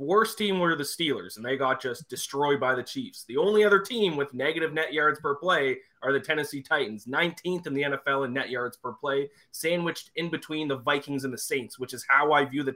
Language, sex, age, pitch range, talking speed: English, male, 20-39, 125-160 Hz, 235 wpm